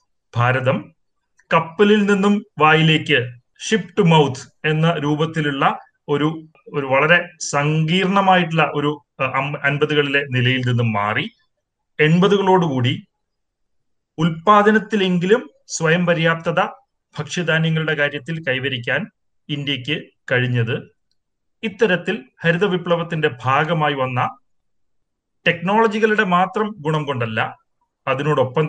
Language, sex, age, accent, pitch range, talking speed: Malayalam, male, 30-49, native, 135-190 Hz, 70 wpm